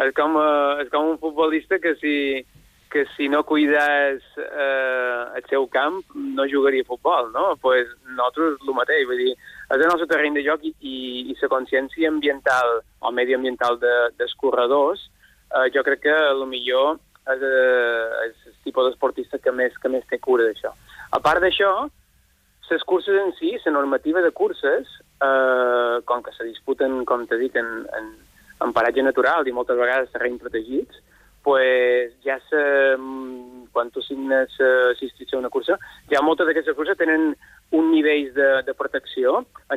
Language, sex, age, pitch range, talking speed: Spanish, male, 20-39, 125-150 Hz, 165 wpm